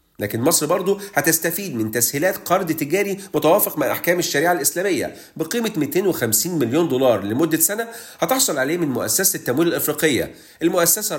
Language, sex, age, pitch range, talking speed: Arabic, male, 40-59, 135-195 Hz, 140 wpm